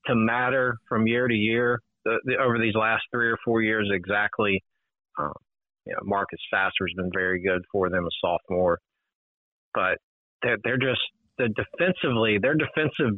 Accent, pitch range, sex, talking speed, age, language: American, 105-125 Hz, male, 165 wpm, 40-59, English